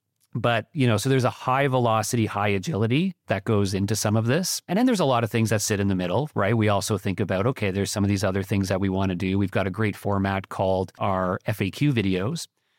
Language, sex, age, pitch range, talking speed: English, male, 40-59, 100-120 Hz, 255 wpm